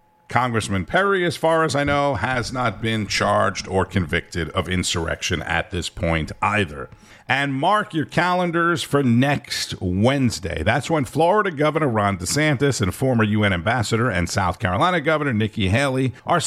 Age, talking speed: 50-69, 155 wpm